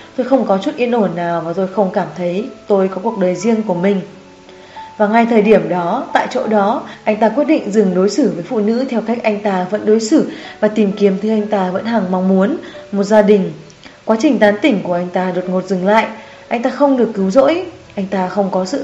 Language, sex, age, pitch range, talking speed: Vietnamese, female, 20-39, 185-230 Hz, 250 wpm